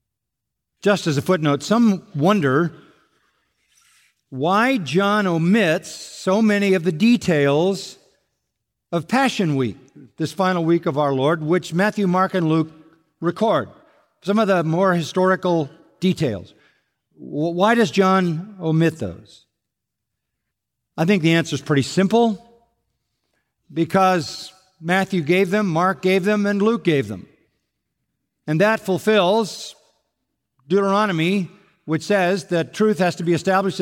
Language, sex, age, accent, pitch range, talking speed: English, male, 50-69, American, 155-195 Hz, 125 wpm